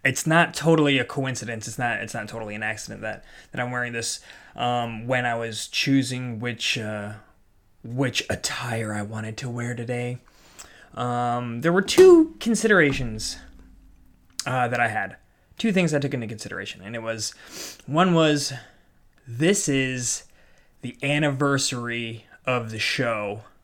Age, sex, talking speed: 20-39, male, 145 wpm